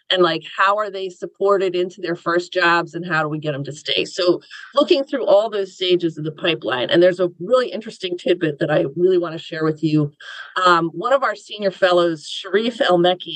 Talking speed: 220 wpm